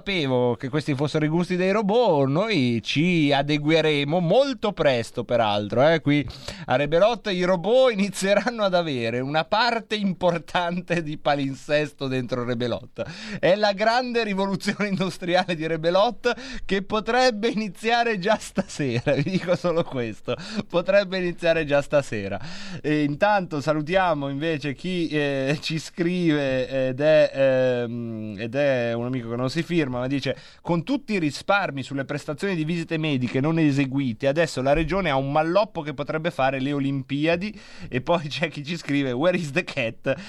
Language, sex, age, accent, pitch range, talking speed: Italian, male, 30-49, native, 130-180 Hz, 150 wpm